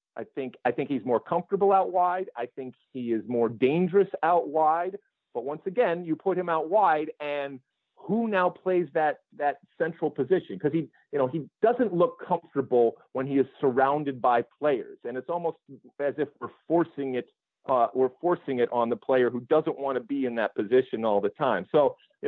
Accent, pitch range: American, 130-180 Hz